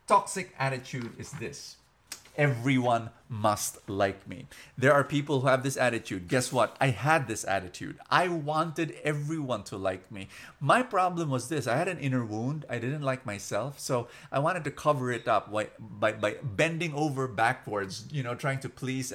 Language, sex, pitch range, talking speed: English, male, 115-155 Hz, 180 wpm